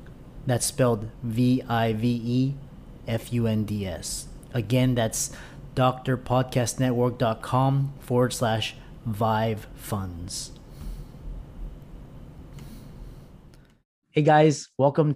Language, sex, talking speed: English, male, 85 wpm